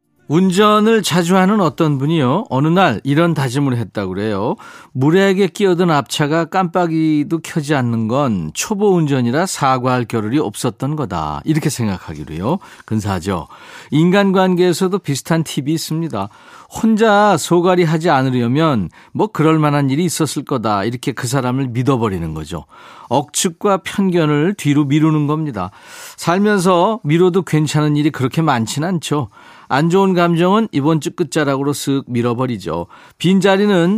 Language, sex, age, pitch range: Korean, male, 40-59, 130-180 Hz